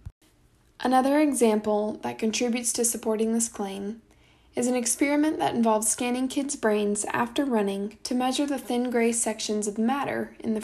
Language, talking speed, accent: English, 160 wpm, American